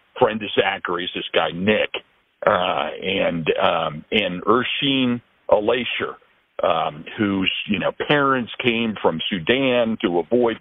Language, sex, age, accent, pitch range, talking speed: English, male, 50-69, American, 110-155 Hz, 130 wpm